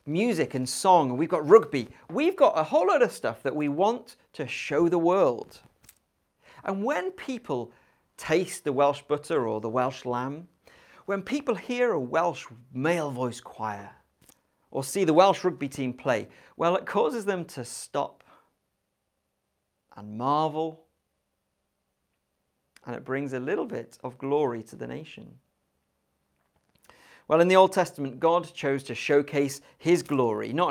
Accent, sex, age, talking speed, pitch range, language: British, male, 40-59, 150 wpm, 125-195 Hz, English